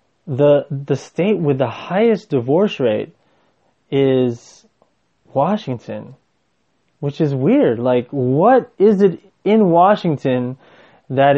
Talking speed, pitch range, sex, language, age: 105 wpm, 125-165 Hz, male, English, 20-39